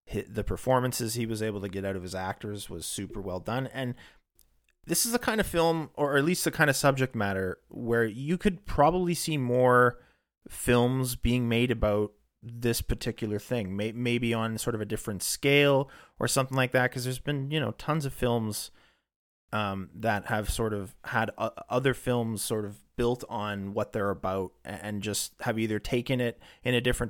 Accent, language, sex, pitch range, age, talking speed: American, English, male, 95-125 Hz, 30-49, 190 wpm